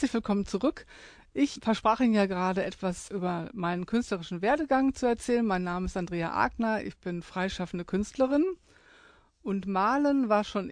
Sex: female